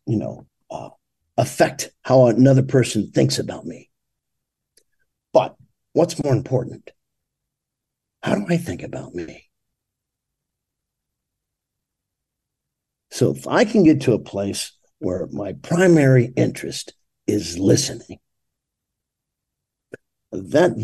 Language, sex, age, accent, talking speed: English, male, 50-69, American, 100 wpm